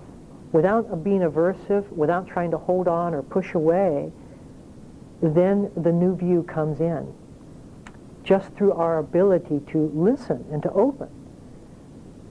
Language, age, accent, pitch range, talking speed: English, 60-79, American, 165-215 Hz, 125 wpm